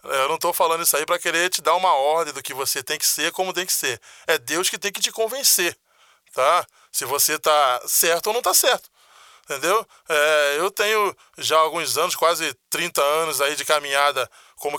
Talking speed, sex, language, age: 205 wpm, male, Portuguese, 20-39